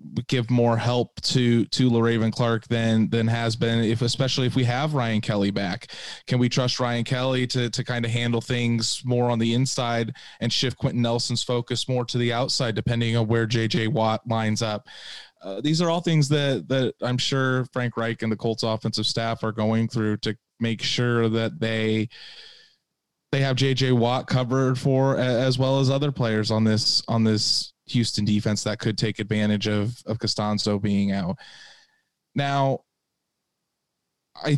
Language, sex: English, male